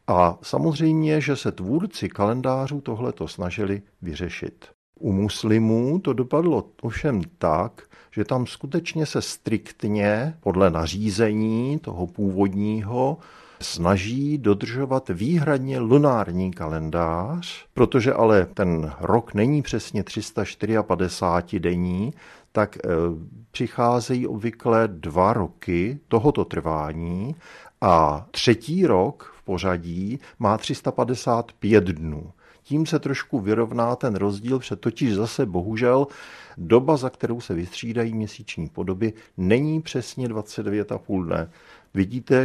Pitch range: 100-140 Hz